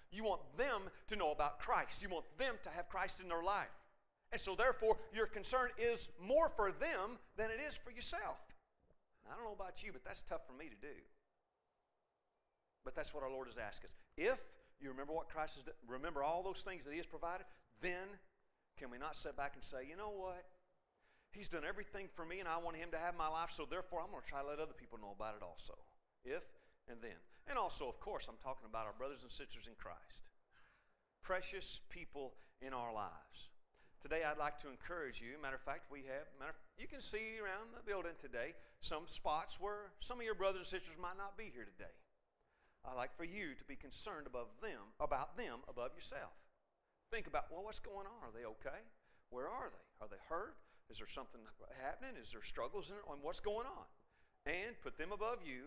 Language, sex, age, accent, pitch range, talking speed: English, male, 40-59, American, 145-205 Hz, 215 wpm